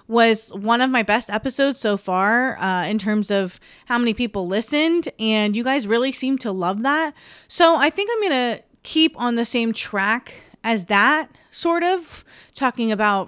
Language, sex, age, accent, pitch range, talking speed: English, female, 20-39, American, 200-250 Hz, 180 wpm